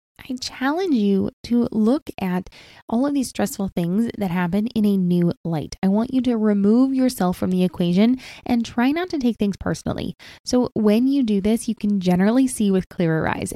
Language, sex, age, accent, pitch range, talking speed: English, female, 20-39, American, 180-235 Hz, 200 wpm